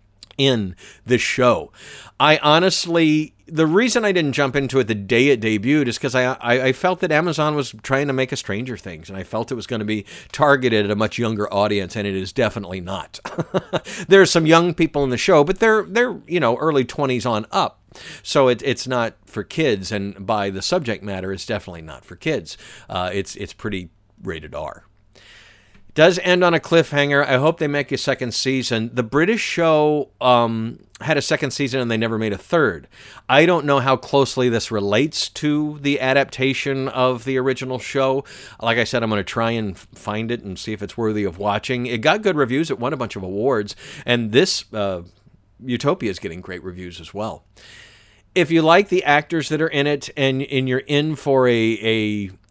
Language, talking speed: English, 205 wpm